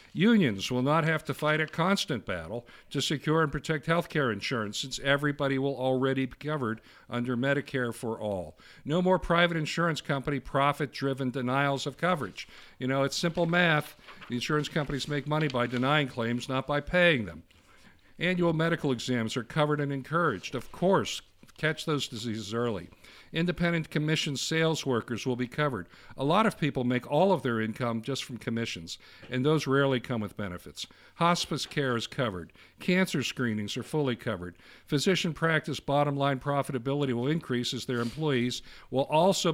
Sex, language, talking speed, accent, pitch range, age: male, English, 170 wpm, American, 125-160 Hz, 50-69